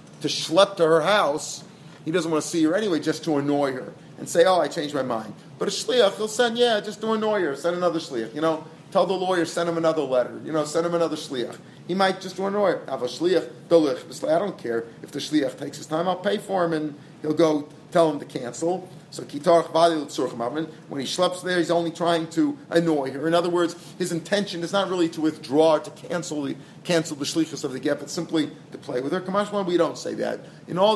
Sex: male